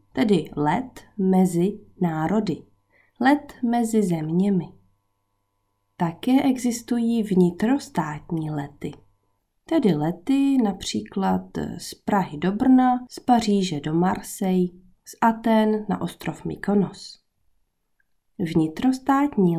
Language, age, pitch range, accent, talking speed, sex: Czech, 20-39, 160-225 Hz, native, 85 wpm, female